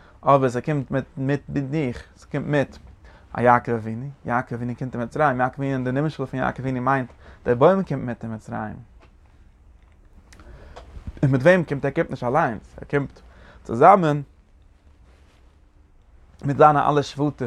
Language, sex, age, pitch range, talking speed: English, male, 30-49, 110-140 Hz, 130 wpm